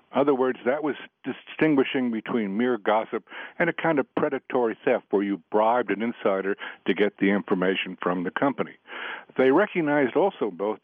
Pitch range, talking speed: 110-140 Hz, 170 wpm